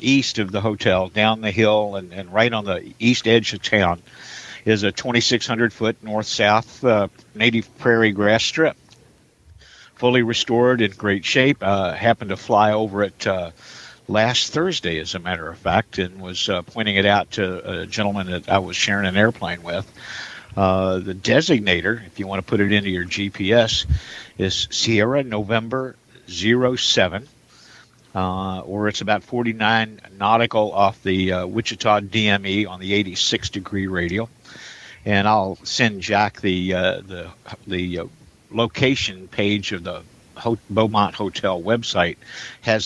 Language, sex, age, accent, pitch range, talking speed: English, male, 50-69, American, 95-115 Hz, 155 wpm